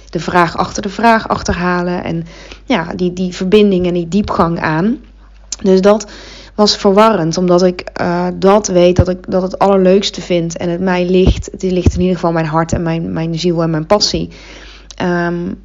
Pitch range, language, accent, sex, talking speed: 170-205 Hz, Dutch, Dutch, female, 190 wpm